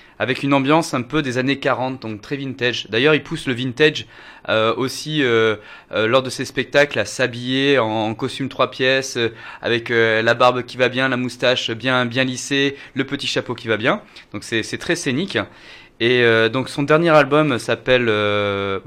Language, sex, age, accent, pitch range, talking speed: French, male, 20-39, French, 115-140 Hz, 200 wpm